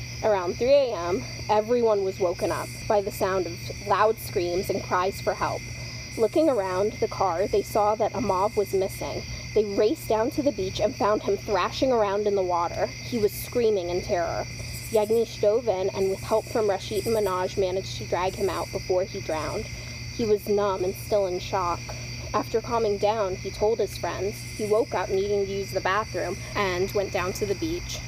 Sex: female